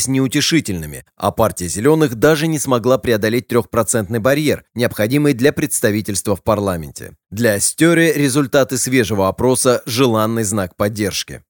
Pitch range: 110-145 Hz